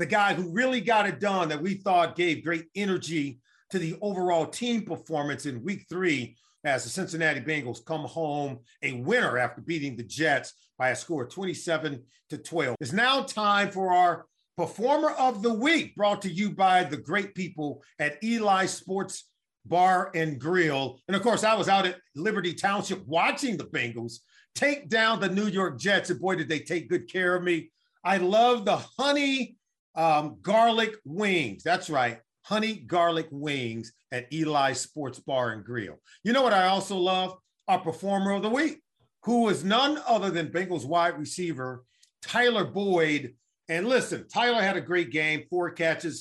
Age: 40-59